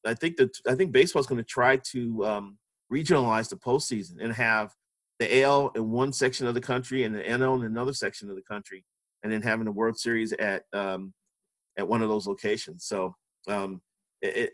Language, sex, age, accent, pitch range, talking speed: English, male, 40-59, American, 115-135 Hz, 205 wpm